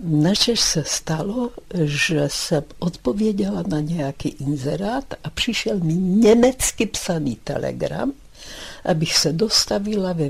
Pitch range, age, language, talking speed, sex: 150-205 Hz, 60-79, Czech, 110 wpm, female